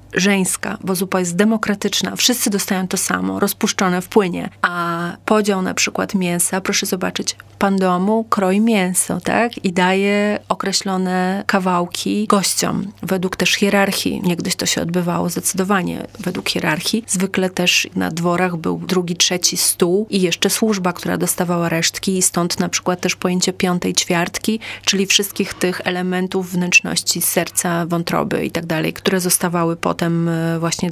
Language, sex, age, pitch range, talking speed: Polish, female, 30-49, 180-200 Hz, 145 wpm